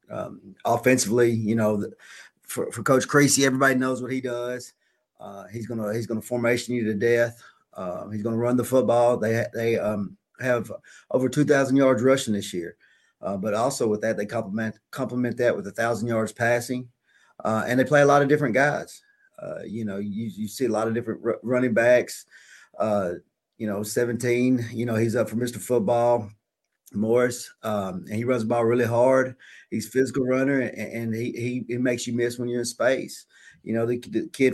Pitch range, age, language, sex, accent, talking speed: 110-125 Hz, 30-49, English, male, American, 205 wpm